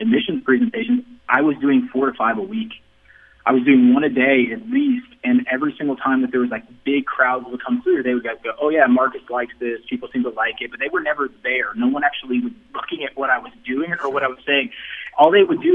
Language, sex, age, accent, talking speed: English, male, 30-49, American, 260 wpm